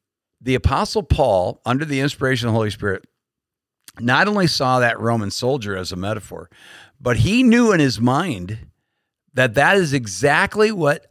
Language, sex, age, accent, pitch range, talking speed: English, male, 50-69, American, 110-140 Hz, 160 wpm